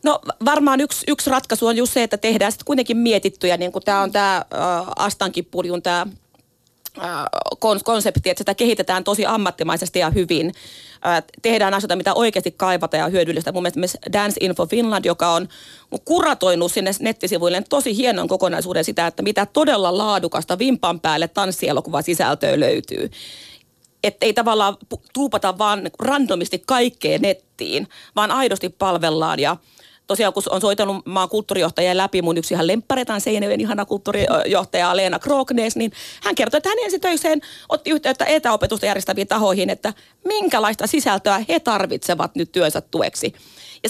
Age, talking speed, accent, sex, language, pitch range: 30-49, 150 wpm, native, female, Finnish, 180-235 Hz